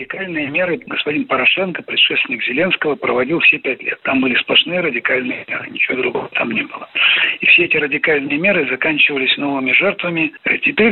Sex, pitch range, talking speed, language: male, 145-190 Hz, 160 wpm, Russian